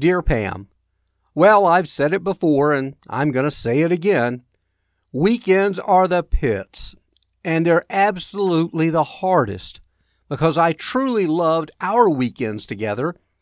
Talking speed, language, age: 135 wpm, English, 50-69